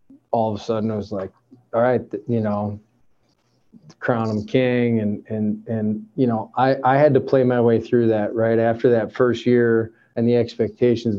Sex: male